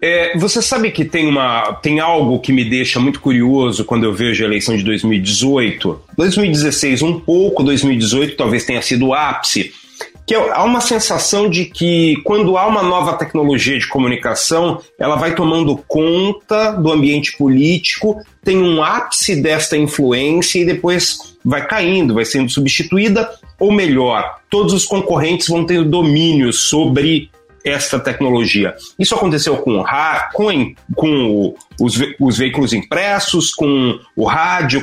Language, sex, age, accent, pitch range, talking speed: Portuguese, male, 40-59, Brazilian, 130-175 Hz, 145 wpm